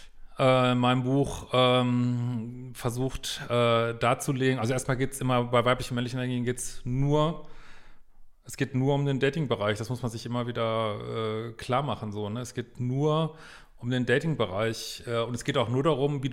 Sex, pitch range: male, 120-150 Hz